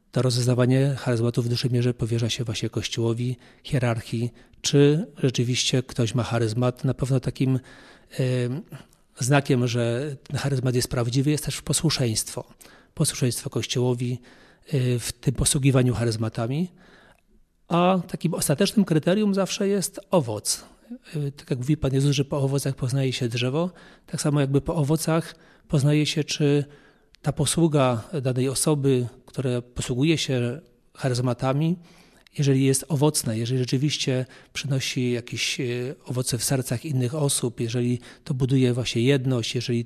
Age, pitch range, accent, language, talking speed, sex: 40-59, 125-145 Hz, native, Polish, 130 wpm, male